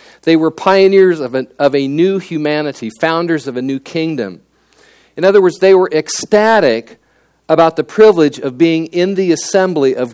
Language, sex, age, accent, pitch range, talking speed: English, male, 50-69, American, 130-185 Hz, 165 wpm